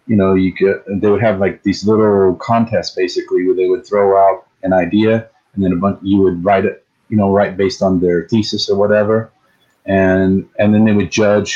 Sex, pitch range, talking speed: male, 100-115 Hz, 220 wpm